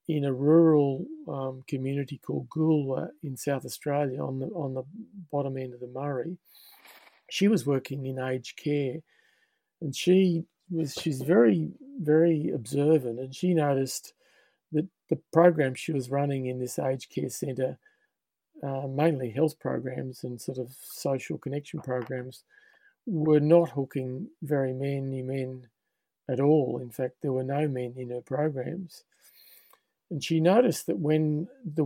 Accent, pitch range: Australian, 130-165 Hz